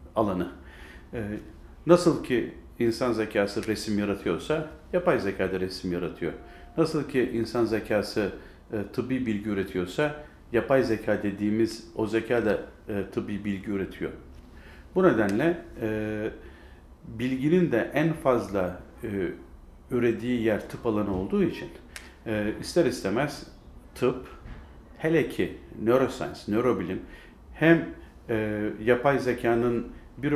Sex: male